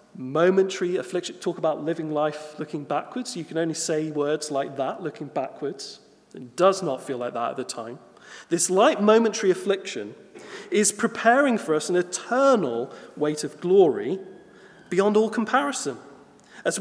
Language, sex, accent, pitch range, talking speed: English, male, British, 155-200 Hz, 155 wpm